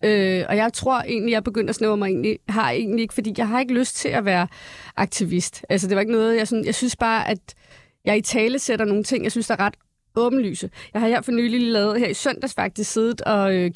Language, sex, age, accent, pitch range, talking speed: Danish, female, 30-49, native, 190-245 Hz, 260 wpm